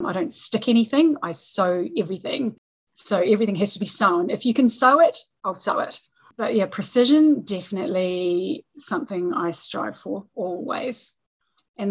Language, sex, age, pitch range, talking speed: English, female, 30-49, 180-235 Hz, 155 wpm